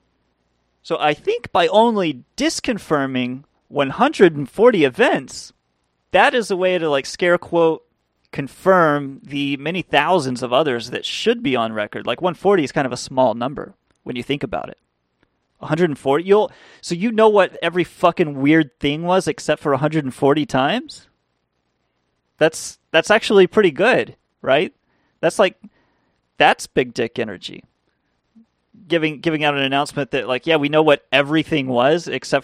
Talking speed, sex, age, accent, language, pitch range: 150 wpm, male, 30-49, American, English, 125-165 Hz